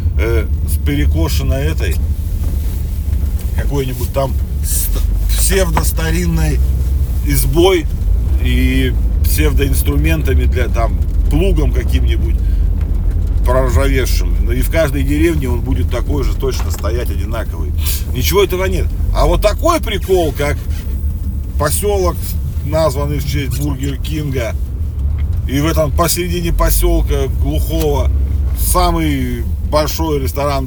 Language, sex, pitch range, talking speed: Russian, male, 75-80 Hz, 95 wpm